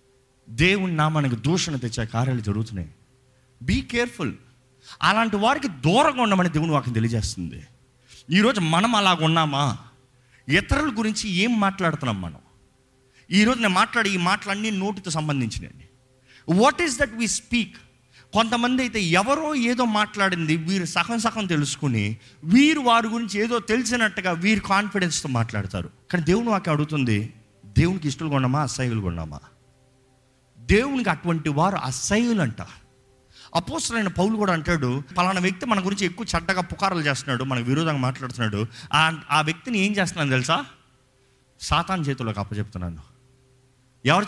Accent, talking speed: native, 120 wpm